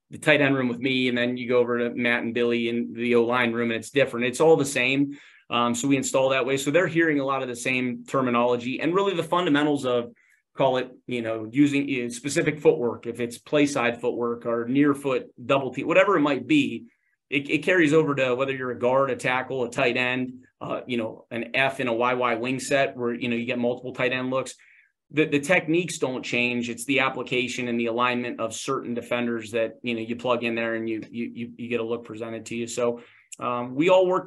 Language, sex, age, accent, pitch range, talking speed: English, male, 30-49, American, 120-135 Hz, 240 wpm